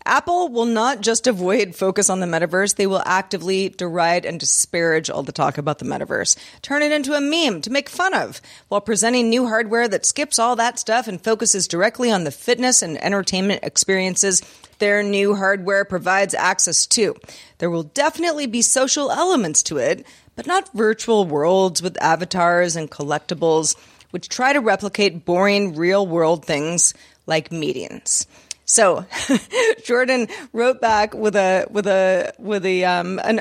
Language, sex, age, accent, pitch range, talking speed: English, female, 30-49, American, 180-255 Hz, 165 wpm